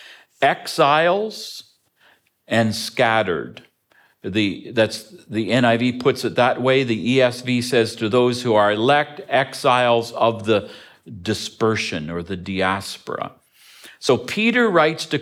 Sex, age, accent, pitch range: male, 50-69, American, 115-170 Hz